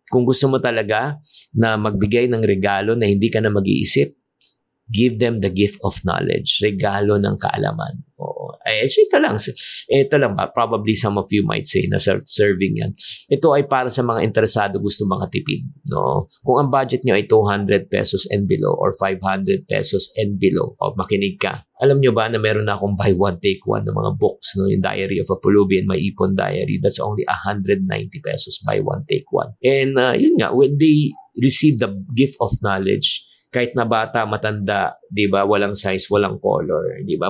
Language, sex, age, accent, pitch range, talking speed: Filipino, male, 50-69, native, 100-125 Hz, 190 wpm